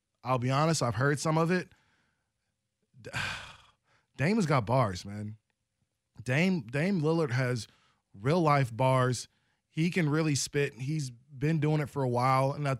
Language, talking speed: English, 155 wpm